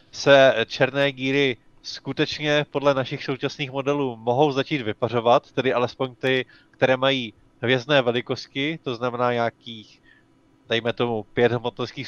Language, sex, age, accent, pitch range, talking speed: Czech, male, 20-39, native, 120-130 Hz, 125 wpm